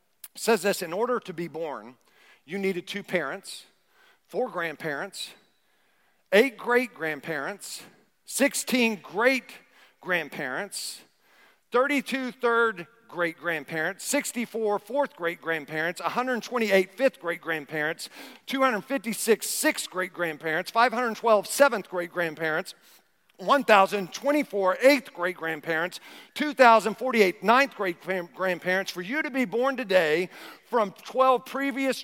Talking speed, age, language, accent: 105 wpm, 50-69, English, American